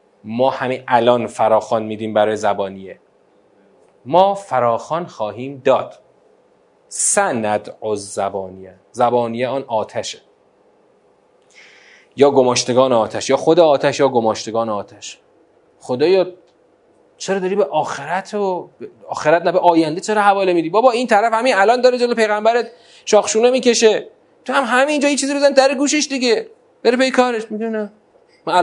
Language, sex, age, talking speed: Persian, male, 30-49, 140 wpm